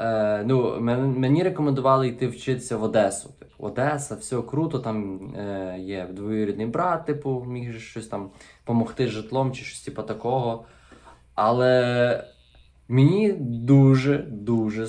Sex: male